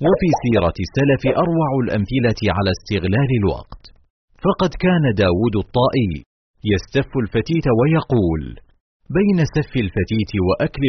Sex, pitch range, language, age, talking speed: male, 100-150 Hz, Arabic, 40-59, 105 wpm